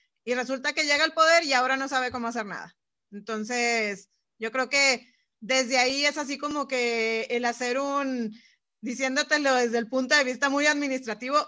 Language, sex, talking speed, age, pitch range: Spanish, female, 180 wpm, 30-49, 220-280 Hz